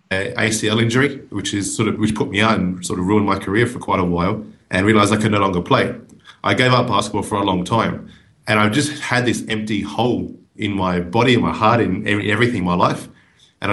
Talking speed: 230 wpm